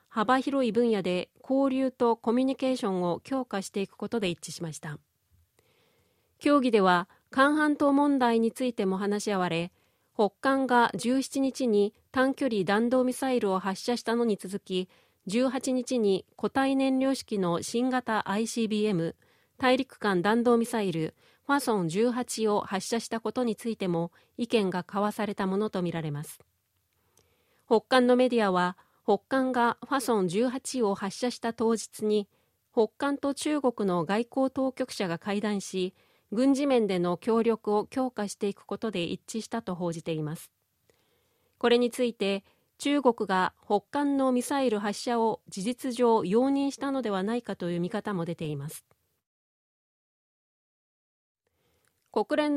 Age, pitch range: 40-59, 195-255 Hz